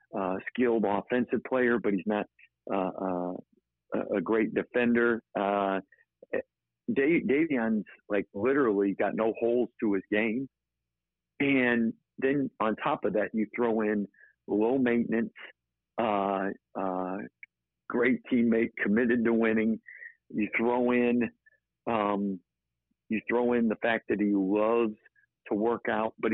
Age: 50-69